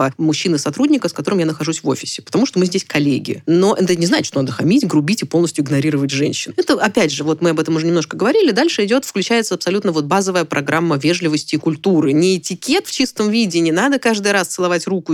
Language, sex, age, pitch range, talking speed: Russian, female, 20-39, 150-185 Hz, 215 wpm